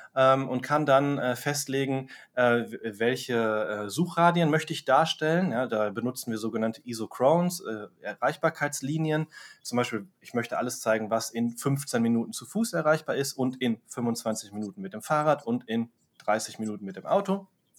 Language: German